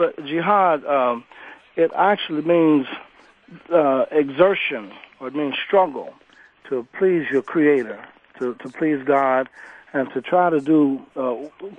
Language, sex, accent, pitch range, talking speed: English, male, American, 135-165 Hz, 130 wpm